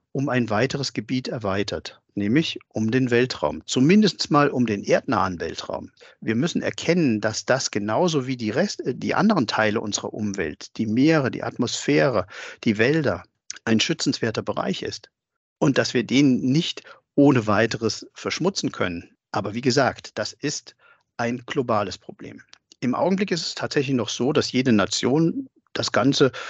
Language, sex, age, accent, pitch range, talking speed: German, male, 50-69, German, 110-145 Hz, 150 wpm